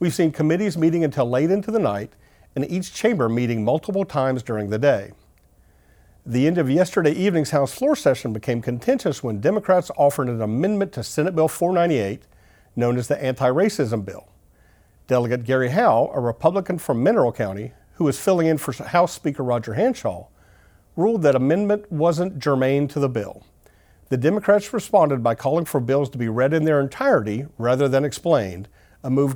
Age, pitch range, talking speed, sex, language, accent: 50-69, 120-165 Hz, 175 wpm, male, English, American